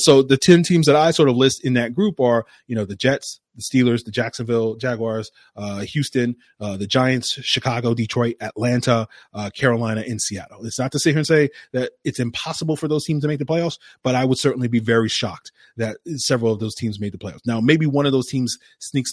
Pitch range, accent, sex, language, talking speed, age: 115-135 Hz, American, male, English, 230 wpm, 30-49